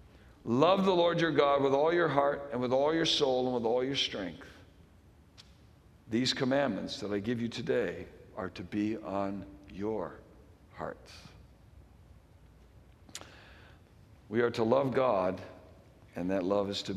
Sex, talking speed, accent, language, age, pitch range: male, 150 wpm, American, English, 60-79, 100-150 Hz